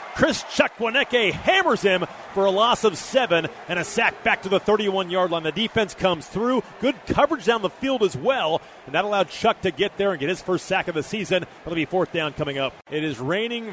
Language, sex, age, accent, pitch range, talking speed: English, male, 30-49, American, 150-195 Hz, 230 wpm